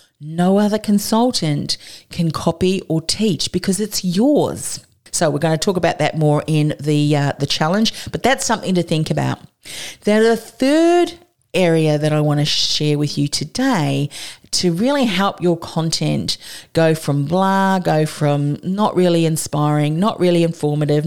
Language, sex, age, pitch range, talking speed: English, female, 40-59, 150-195 Hz, 160 wpm